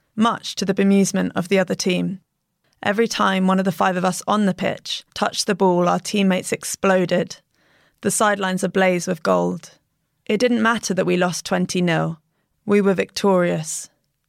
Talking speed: 170 wpm